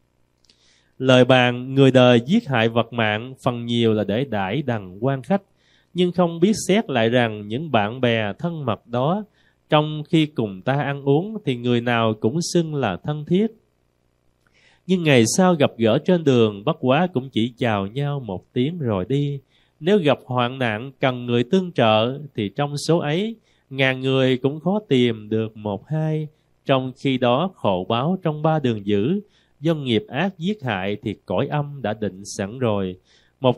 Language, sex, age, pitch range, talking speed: Vietnamese, male, 20-39, 110-160 Hz, 180 wpm